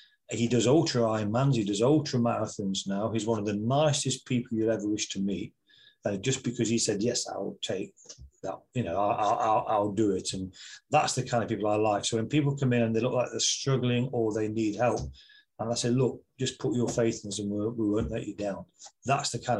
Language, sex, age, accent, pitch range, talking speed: English, male, 40-59, British, 105-130 Hz, 240 wpm